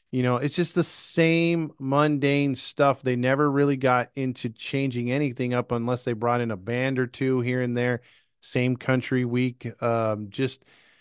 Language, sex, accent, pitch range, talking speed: English, male, American, 125-145 Hz, 175 wpm